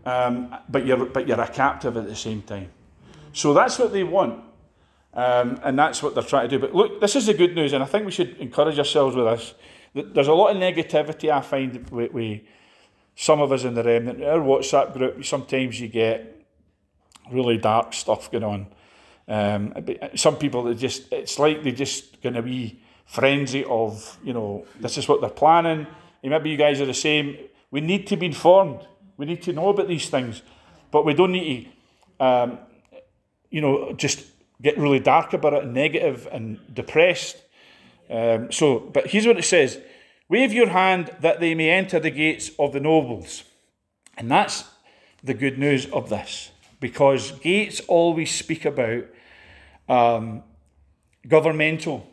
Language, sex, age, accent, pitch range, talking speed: English, male, 40-59, British, 115-160 Hz, 180 wpm